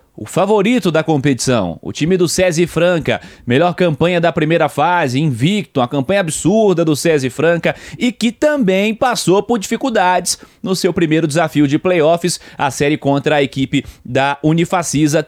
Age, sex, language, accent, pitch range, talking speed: 20-39, male, Portuguese, Brazilian, 135-175 Hz, 155 wpm